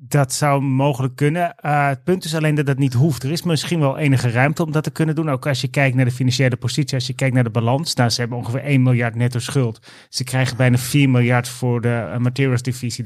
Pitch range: 125-140 Hz